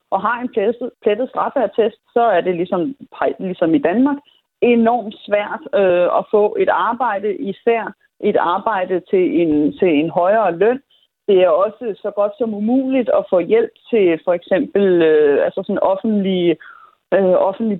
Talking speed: 150 wpm